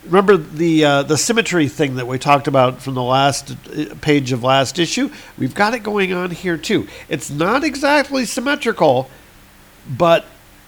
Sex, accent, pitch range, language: male, American, 135-160 Hz, English